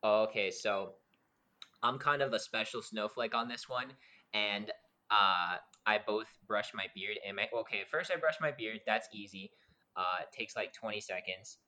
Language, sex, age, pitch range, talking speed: English, male, 10-29, 105-130 Hz, 175 wpm